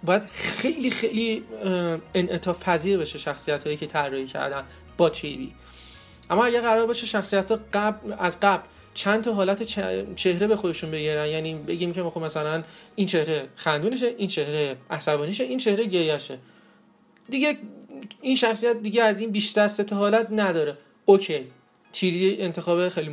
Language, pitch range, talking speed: Persian, 155-210 Hz, 150 wpm